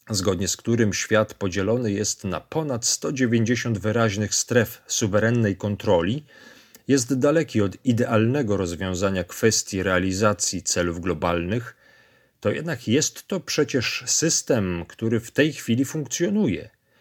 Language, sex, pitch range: Polish, male, 100-125 Hz